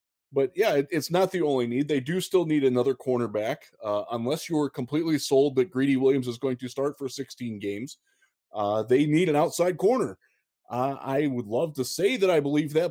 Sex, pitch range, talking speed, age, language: male, 120-155 Hz, 205 wpm, 20-39, English